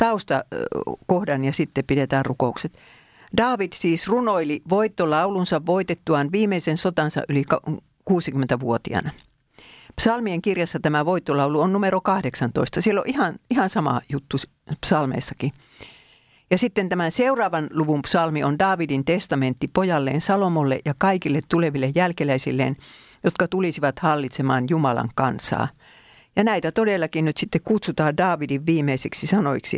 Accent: native